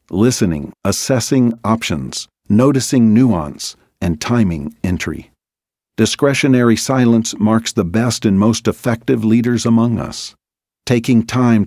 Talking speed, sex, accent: 110 wpm, male, American